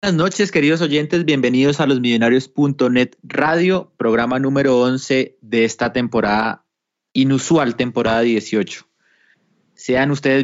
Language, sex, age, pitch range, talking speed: Spanish, male, 30-49, 115-140 Hz, 115 wpm